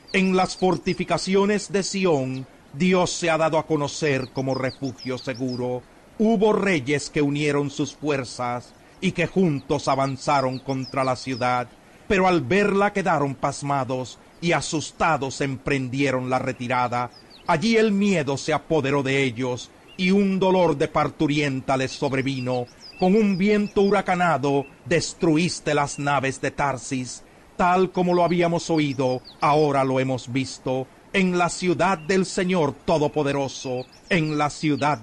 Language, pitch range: Spanish, 130-180 Hz